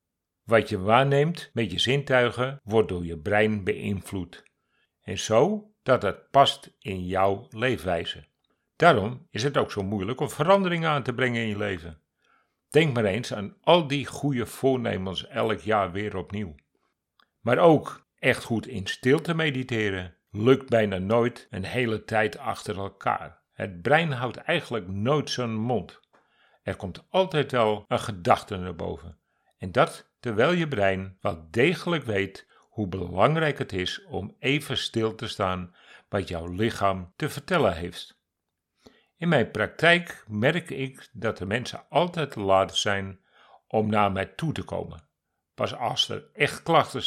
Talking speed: 155 wpm